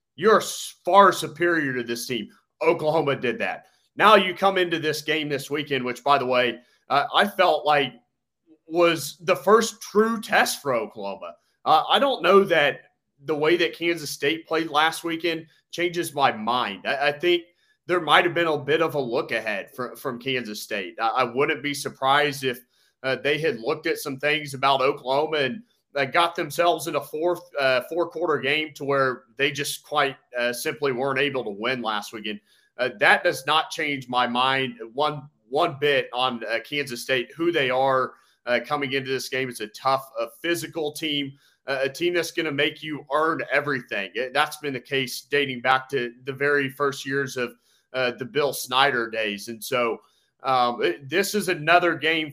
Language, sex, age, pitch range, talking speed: English, male, 30-49, 130-165 Hz, 190 wpm